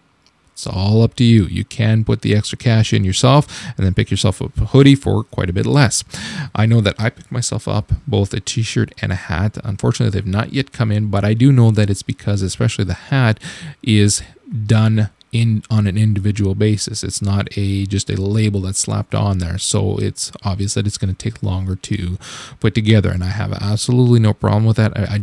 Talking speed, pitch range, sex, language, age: 220 wpm, 100-115 Hz, male, English, 20-39